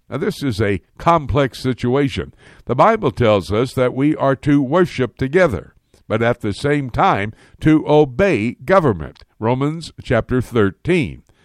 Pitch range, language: 110-150 Hz, English